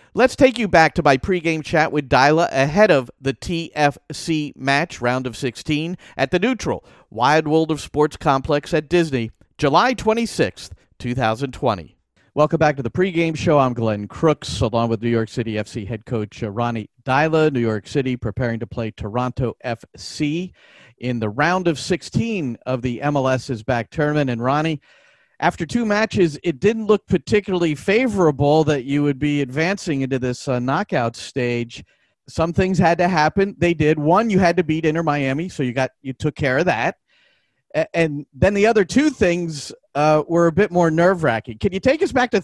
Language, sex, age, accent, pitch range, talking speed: English, male, 50-69, American, 130-175 Hz, 180 wpm